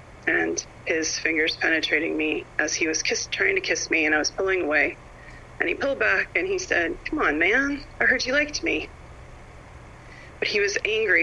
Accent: American